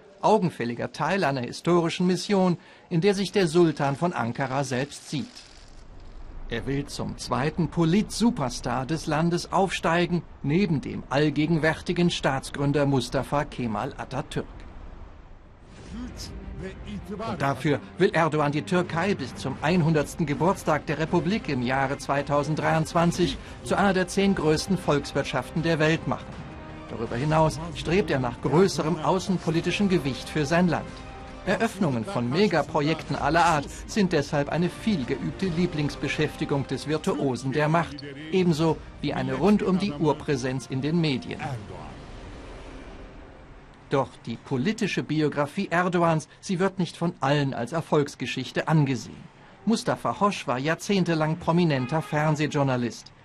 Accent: German